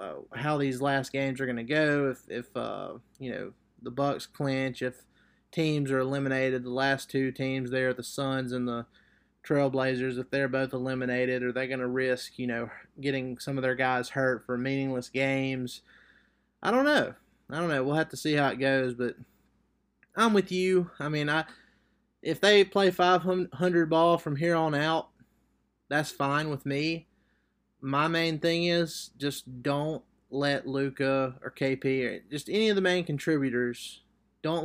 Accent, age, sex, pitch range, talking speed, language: American, 20-39, male, 125-150 Hz, 175 wpm, English